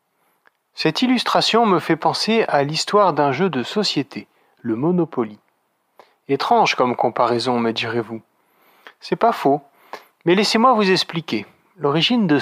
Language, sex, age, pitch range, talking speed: French, male, 40-59, 125-180 Hz, 130 wpm